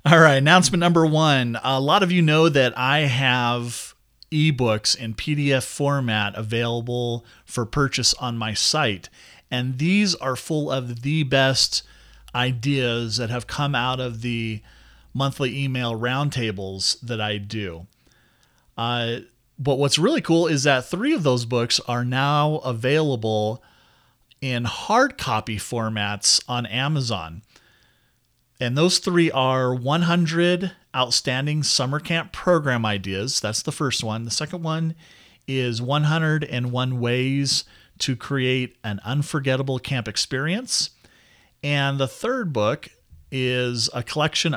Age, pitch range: 30-49, 120-150 Hz